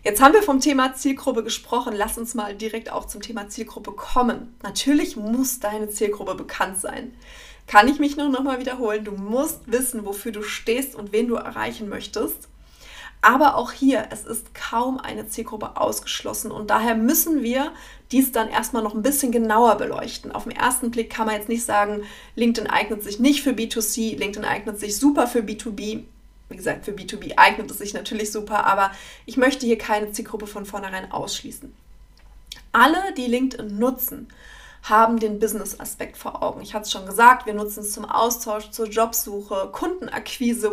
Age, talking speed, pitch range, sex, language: 30-49, 180 wpm, 210-250 Hz, female, German